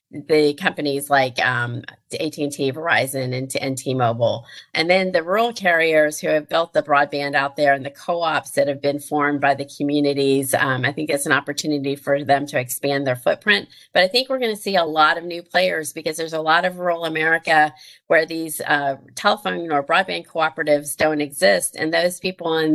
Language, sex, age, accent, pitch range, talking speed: English, female, 40-59, American, 145-165 Hz, 205 wpm